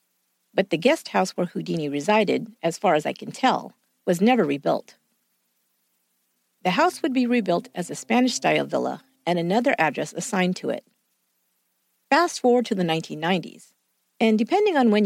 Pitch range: 150-245 Hz